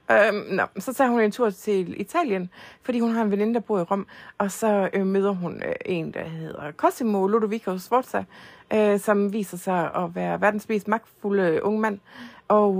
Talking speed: 190 wpm